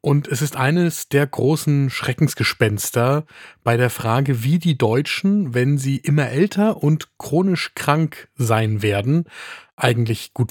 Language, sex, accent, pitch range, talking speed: German, male, German, 120-155 Hz, 135 wpm